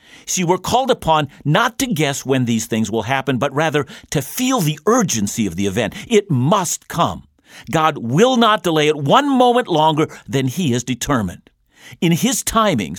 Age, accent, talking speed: 50-69, American, 180 wpm